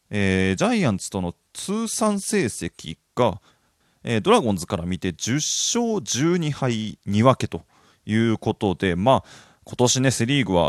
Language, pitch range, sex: Japanese, 95-125 Hz, male